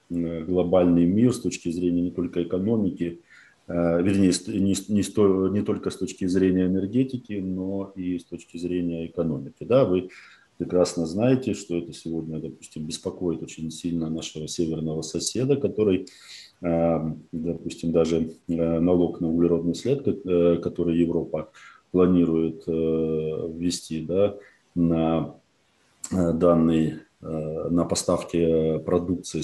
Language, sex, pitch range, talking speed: Ukrainian, male, 80-90 Hz, 105 wpm